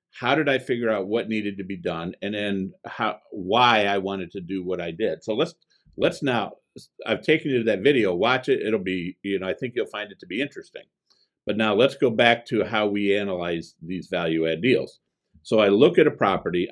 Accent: American